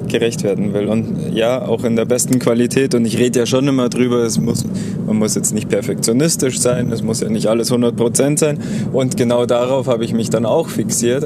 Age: 20-39